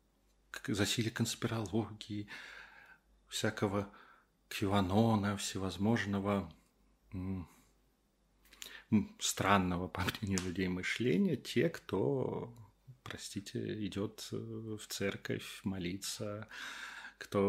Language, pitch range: Russian, 95-110 Hz